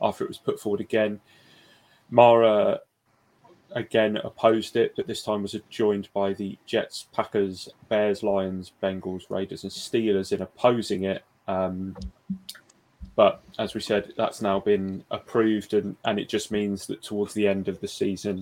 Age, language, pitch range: 20-39, English, 100-110 Hz